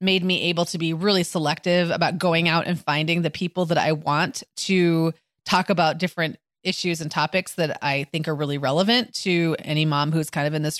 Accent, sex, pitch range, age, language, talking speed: American, female, 165-195 Hz, 30-49, English, 210 wpm